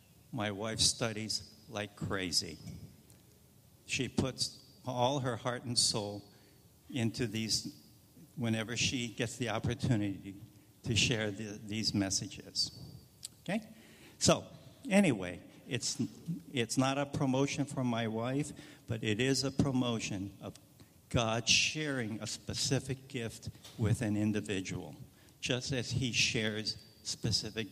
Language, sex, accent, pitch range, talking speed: English, male, American, 105-140 Hz, 115 wpm